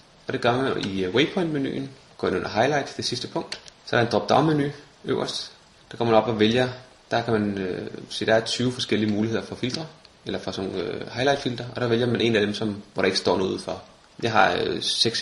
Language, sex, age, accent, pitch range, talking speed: Danish, male, 30-49, native, 105-125 Hz, 225 wpm